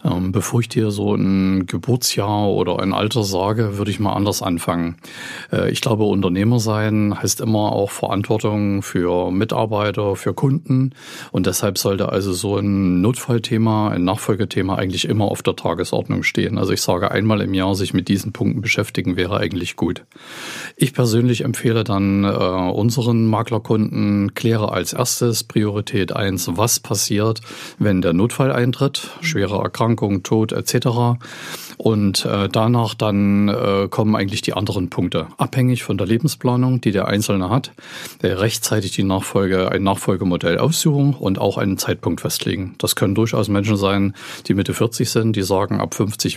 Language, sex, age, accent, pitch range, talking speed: German, male, 50-69, German, 95-115 Hz, 155 wpm